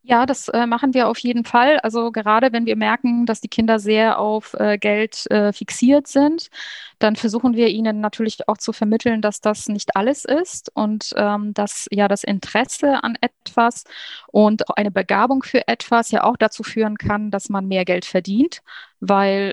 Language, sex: German, female